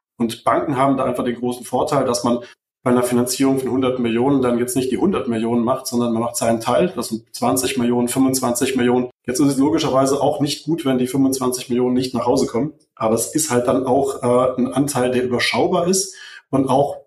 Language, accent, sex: German, German, male